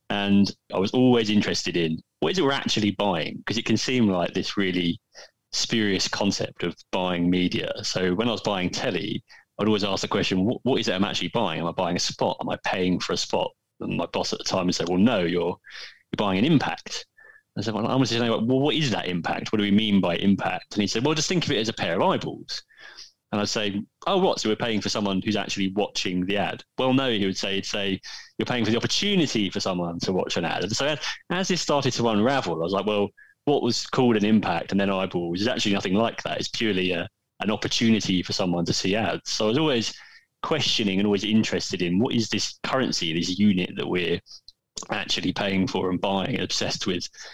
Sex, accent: male, British